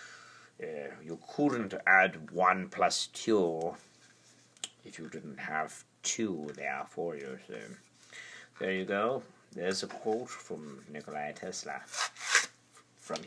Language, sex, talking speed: English, male, 115 wpm